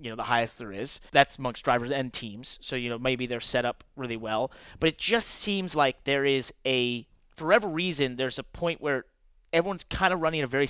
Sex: male